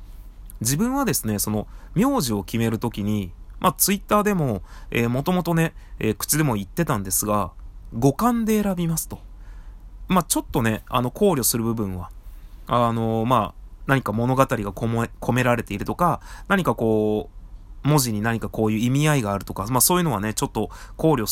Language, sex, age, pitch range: Japanese, male, 20-39, 100-150 Hz